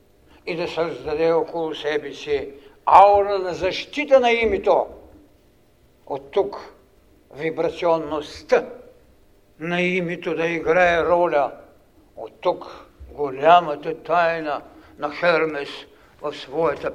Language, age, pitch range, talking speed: Bulgarian, 60-79, 150-195 Hz, 95 wpm